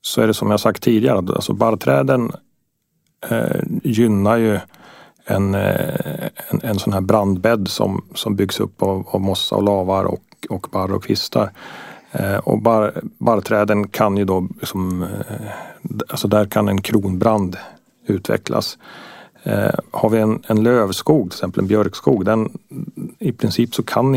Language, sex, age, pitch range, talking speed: Swedish, male, 40-59, 95-110 Hz, 155 wpm